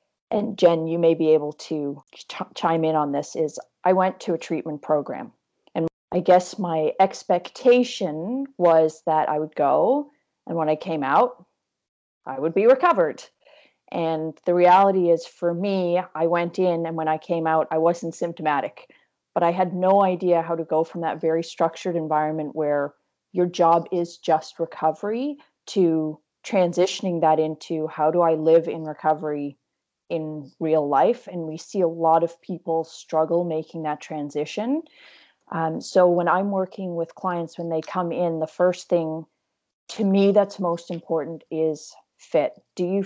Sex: female